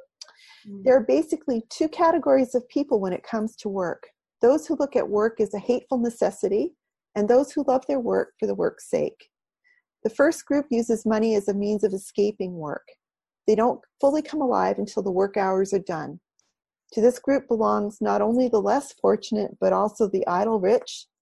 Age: 40-59